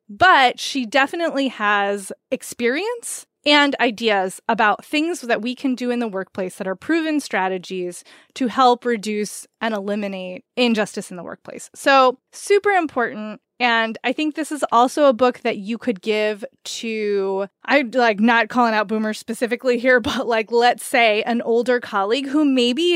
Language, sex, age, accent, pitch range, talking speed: English, female, 20-39, American, 215-270 Hz, 160 wpm